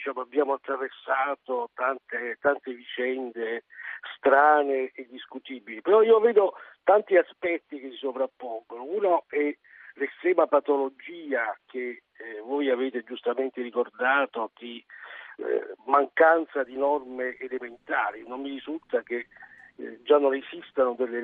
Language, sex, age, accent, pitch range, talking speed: Italian, male, 50-69, native, 125-145 Hz, 115 wpm